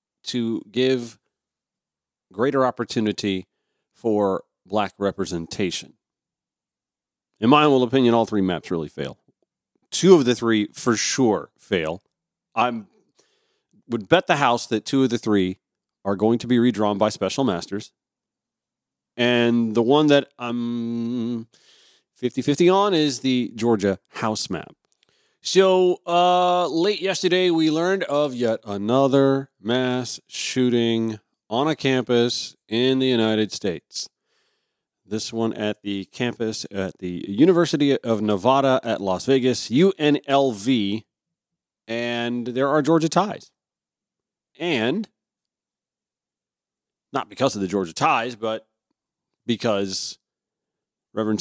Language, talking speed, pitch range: English, 115 wpm, 110-140 Hz